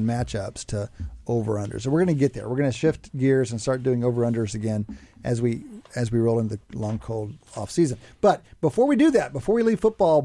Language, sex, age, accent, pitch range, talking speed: English, male, 50-69, American, 115-160 Hz, 220 wpm